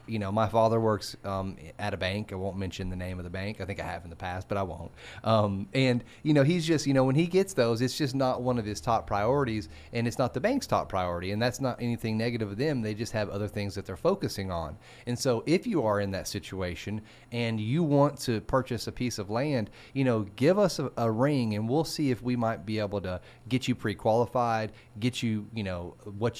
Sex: male